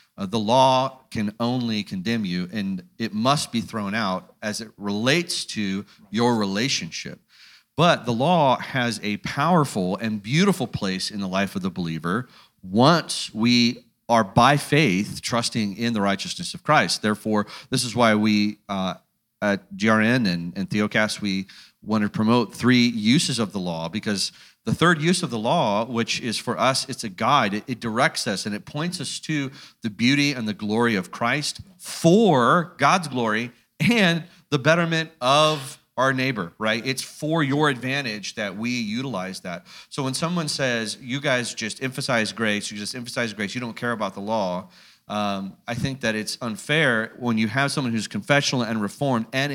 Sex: male